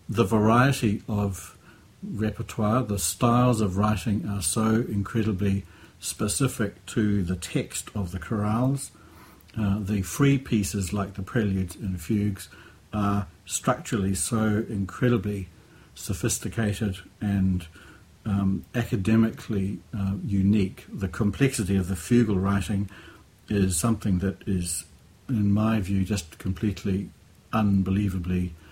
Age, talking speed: 60-79, 110 wpm